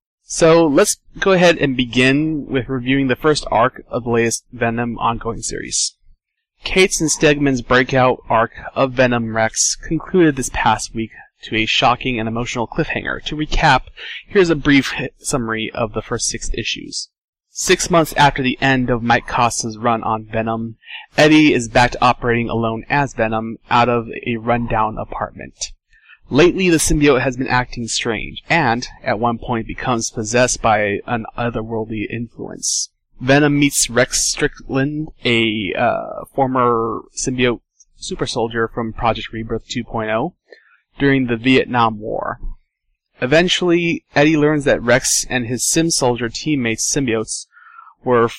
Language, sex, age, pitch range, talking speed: English, male, 20-39, 115-145 Hz, 145 wpm